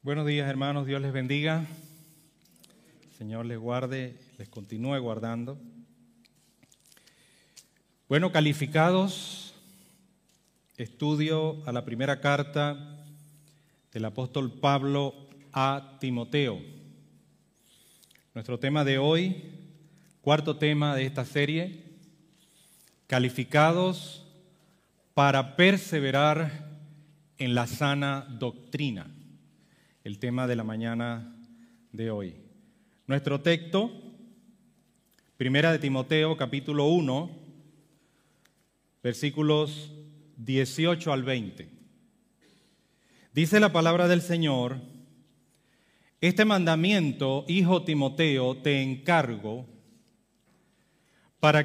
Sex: male